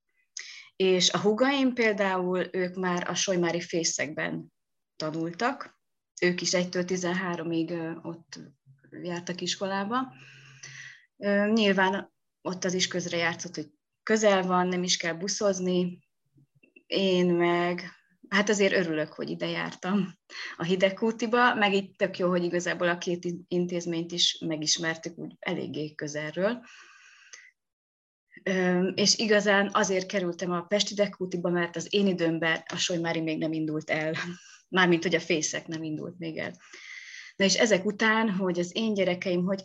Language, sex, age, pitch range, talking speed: Hungarian, female, 30-49, 170-200 Hz, 135 wpm